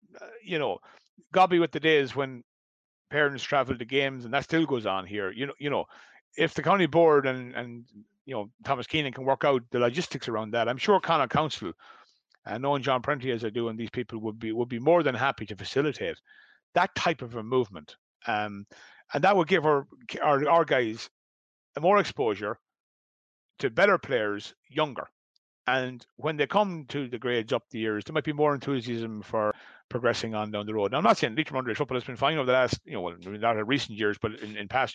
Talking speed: 220 wpm